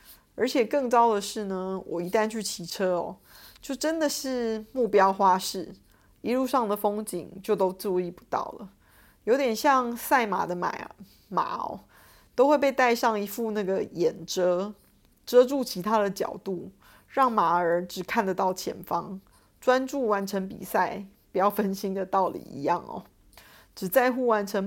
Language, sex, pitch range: Chinese, female, 190-235 Hz